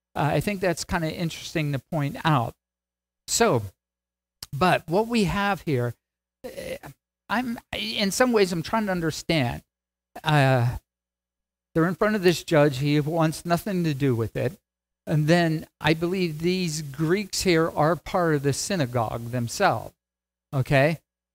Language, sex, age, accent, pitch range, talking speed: English, male, 50-69, American, 120-165 Hz, 145 wpm